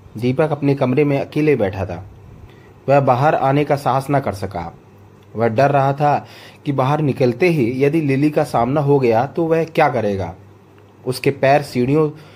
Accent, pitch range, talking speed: native, 105-150 Hz, 175 wpm